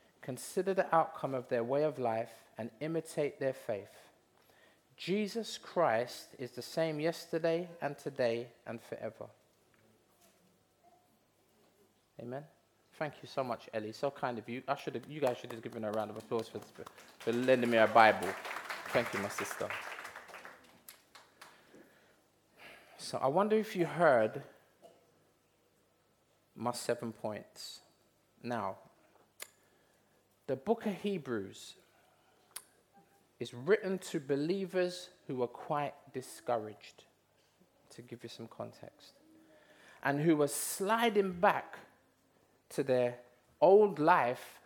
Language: English